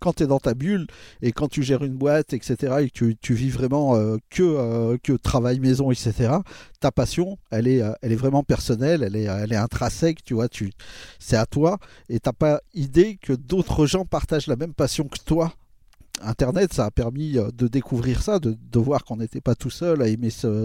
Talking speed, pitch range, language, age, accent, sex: 220 wpm, 115-150 Hz, French, 50-69, French, male